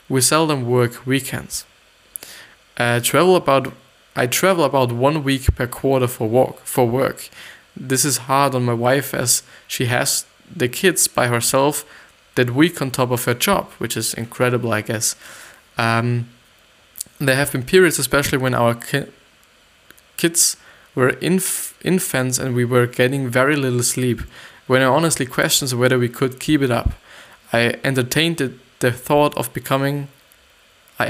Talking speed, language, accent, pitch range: 155 wpm, English, German, 120-145 Hz